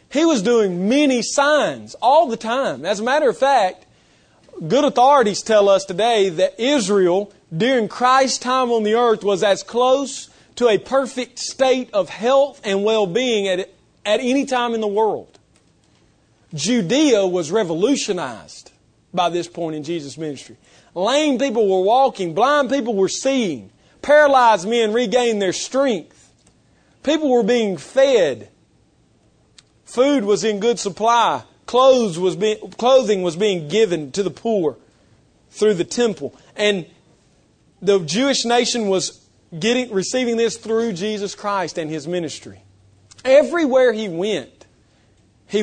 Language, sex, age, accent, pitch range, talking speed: English, male, 40-59, American, 185-255 Hz, 140 wpm